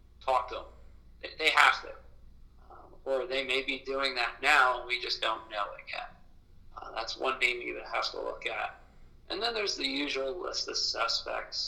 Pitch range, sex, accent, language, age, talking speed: 115-150 Hz, male, American, English, 40-59, 195 wpm